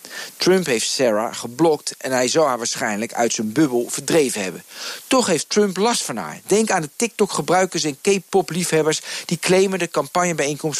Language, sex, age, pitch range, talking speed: Dutch, male, 50-69, 125-190 Hz, 165 wpm